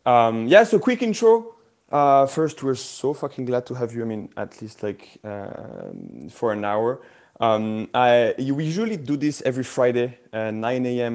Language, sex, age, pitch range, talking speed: English, male, 30-49, 110-135 Hz, 185 wpm